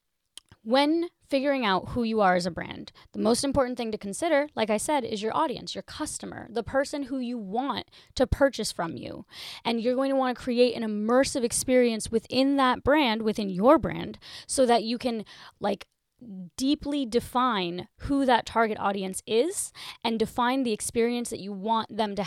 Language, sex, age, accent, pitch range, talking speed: English, female, 20-39, American, 205-255 Hz, 185 wpm